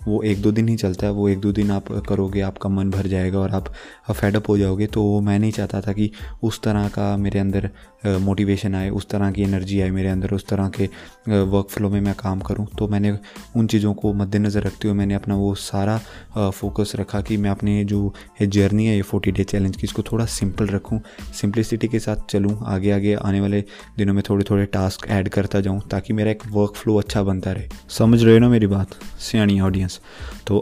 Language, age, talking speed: Punjabi, 20-39, 225 wpm